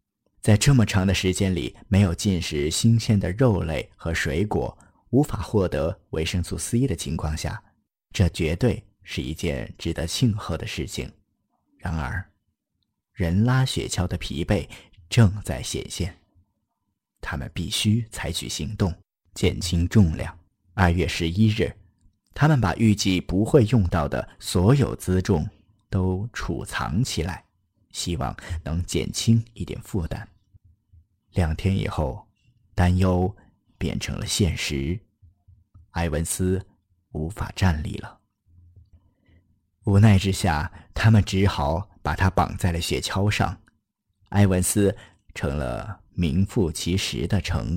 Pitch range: 85-105 Hz